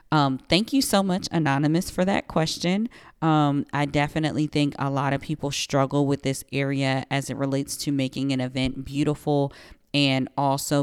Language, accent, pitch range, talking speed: English, American, 135-150 Hz, 170 wpm